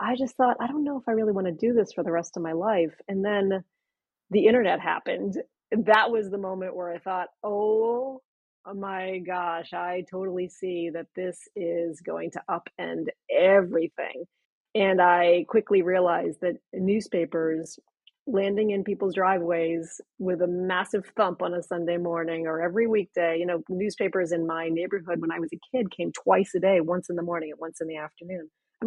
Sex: female